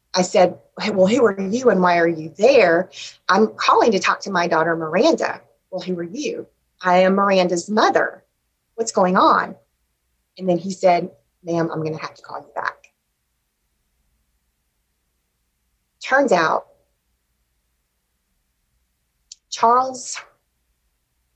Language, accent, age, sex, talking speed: English, American, 30-49, female, 130 wpm